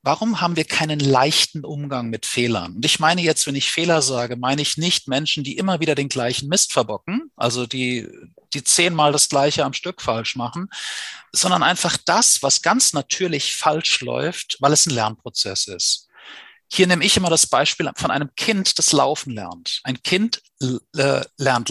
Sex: male